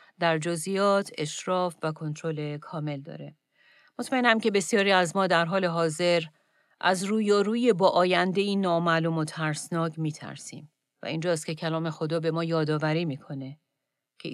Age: 40-59